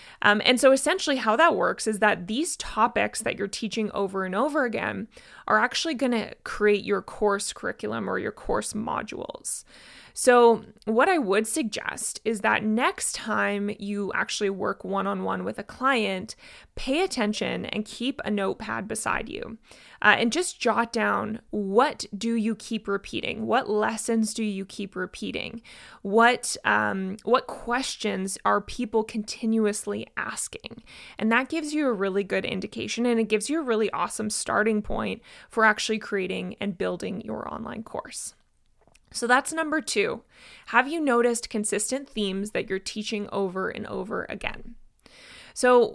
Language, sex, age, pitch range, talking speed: English, female, 20-39, 205-245 Hz, 155 wpm